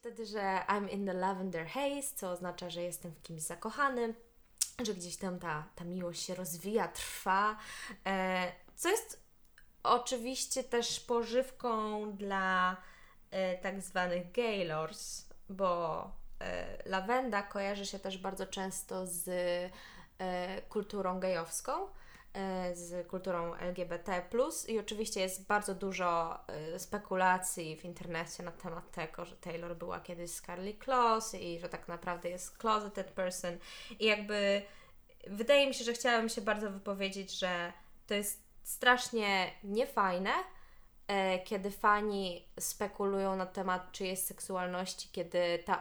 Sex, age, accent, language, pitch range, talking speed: female, 20-39, native, Polish, 180-215 Hz, 125 wpm